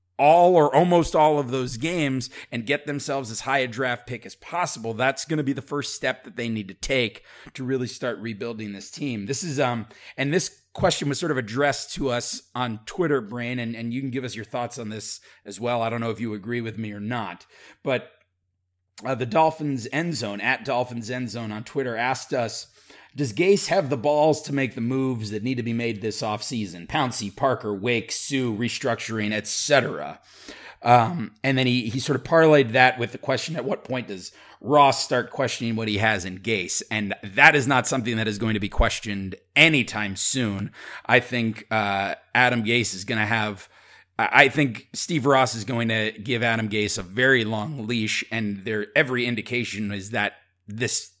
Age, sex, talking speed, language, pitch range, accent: 30-49, male, 205 wpm, English, 105-135 Hz, American